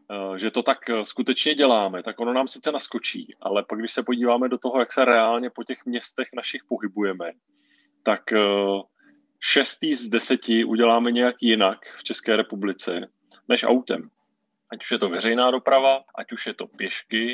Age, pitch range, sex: 30-49, 115-130 Hz, male